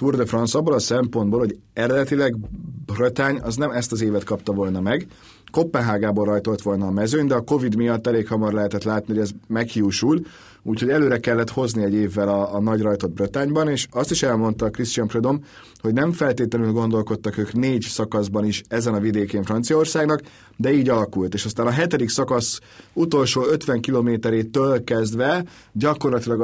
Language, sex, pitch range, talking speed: Hungarian, male, 105-140 Hz, 170 wpm